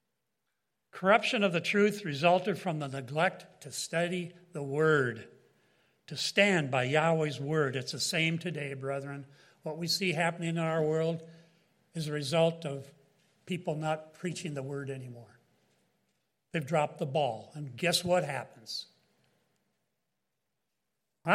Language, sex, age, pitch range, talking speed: English, male, 60-79, 155-200 Hz, 135 wpm